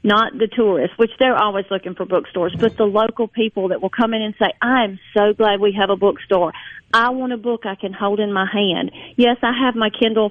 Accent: American